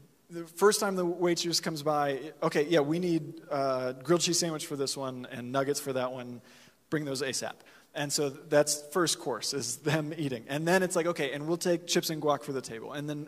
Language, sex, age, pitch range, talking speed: English, male, 30-49, 145-195 Hz, 225 wpm